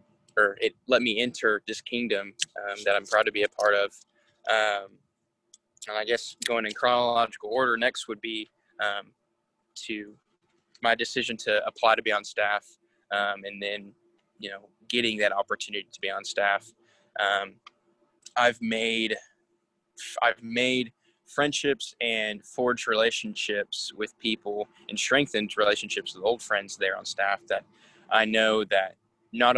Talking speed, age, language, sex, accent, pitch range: 150 wpm, 20-39, English, male, American, 100-115 Hz